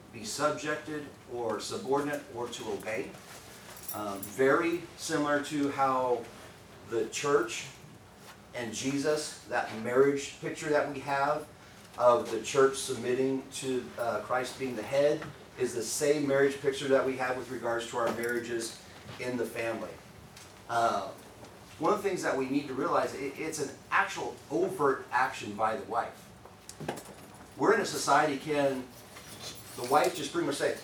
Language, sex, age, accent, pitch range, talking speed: English, male, 40-59, American, 120-150 Hz, 150 wpm